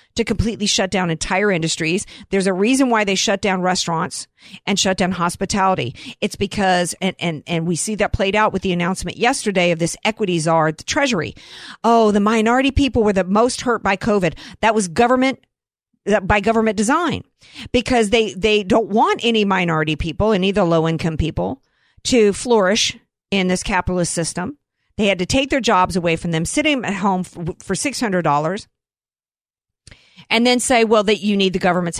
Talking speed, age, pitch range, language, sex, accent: 185 wpm, 50-69, 175-220 Hz, English, female, American